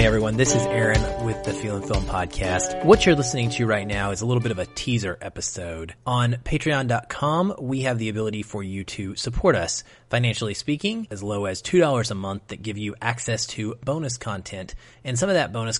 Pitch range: 110-130 Hz